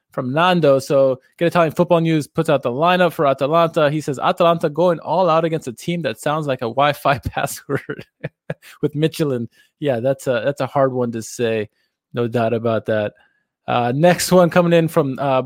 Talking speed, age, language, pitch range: 190 wpm, 20-39, English, 130-170 Hz